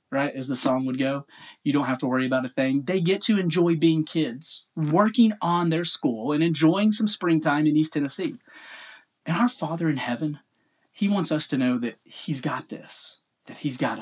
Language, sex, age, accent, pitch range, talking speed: English, male, 30-49, American, 135-185 Hz, 205 wpm